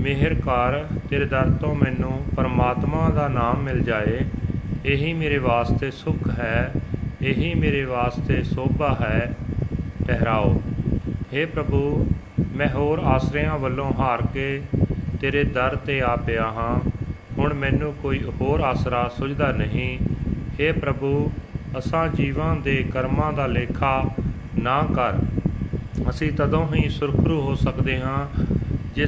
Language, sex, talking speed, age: Punjabi, male, 125 wpm, 40-59